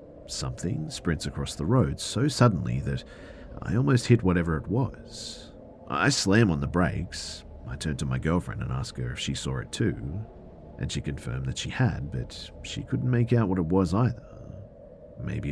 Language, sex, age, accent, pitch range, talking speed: English, male, 40-59, Australian, 75-115 Hz, 185 wpm